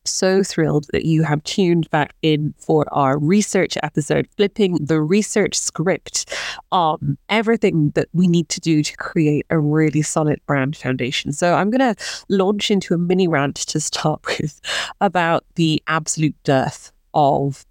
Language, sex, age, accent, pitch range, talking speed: English, female, 30-49, British, 155-205 Hz, 155 wpm